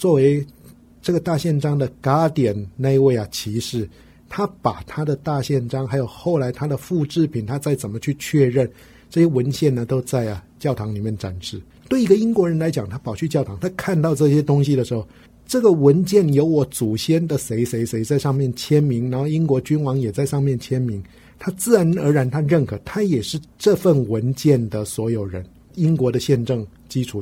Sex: male